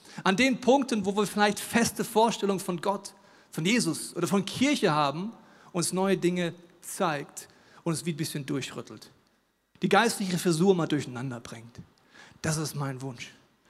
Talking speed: 160 wpm